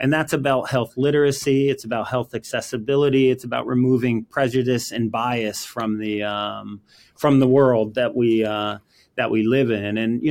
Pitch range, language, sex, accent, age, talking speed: 120-145 Hz, English, male, American, 30-49, 175 wpm